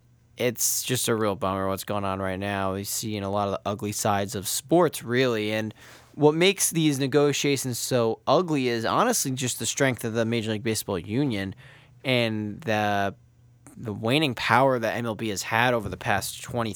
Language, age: English, 20-39